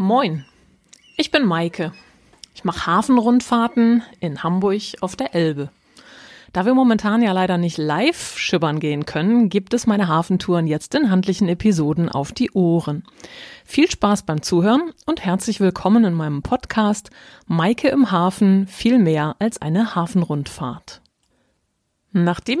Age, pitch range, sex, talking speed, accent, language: 30-49, 160-215 Hz, female, 140 wpm, German, German